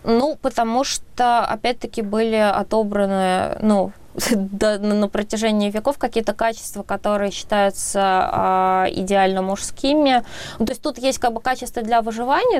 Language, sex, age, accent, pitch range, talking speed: Russian, female, 20-39, native, 205-245 Hz, 130 wpm